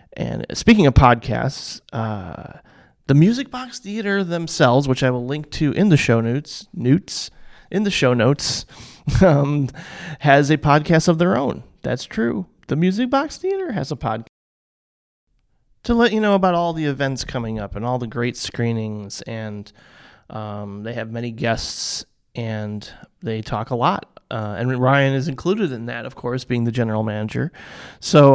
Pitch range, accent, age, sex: 120-155 Hz, American, 30-49, male